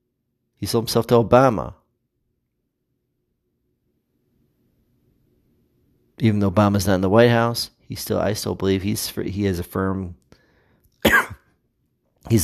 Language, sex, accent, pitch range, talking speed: English, male, American, 95-115 Hz, 105 wpm